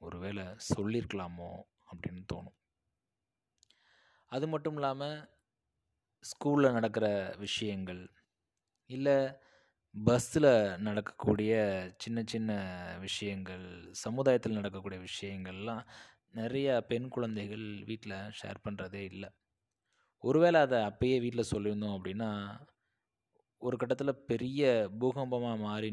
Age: 20-39